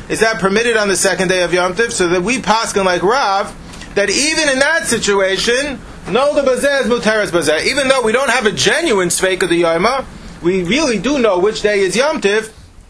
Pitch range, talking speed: 180-230 Hz, 185 wpm